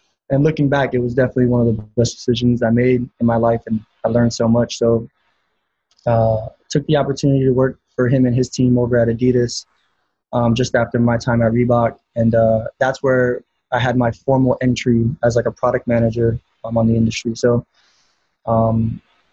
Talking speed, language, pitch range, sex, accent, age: 200 wpm, English, 115-130 Hz, male, American, 20-39